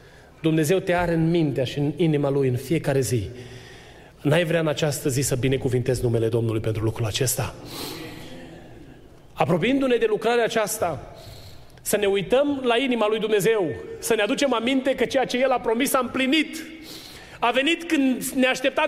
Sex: male